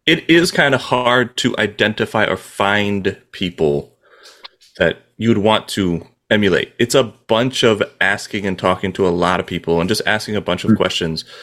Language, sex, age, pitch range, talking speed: English, male, 30-49, 100-130 Hz, 180 wpm